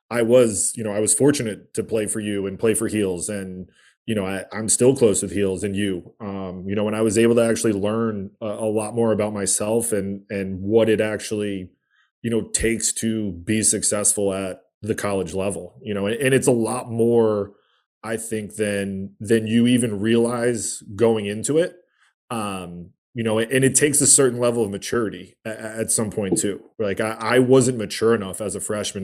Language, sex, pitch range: English, male, 100-115 Hz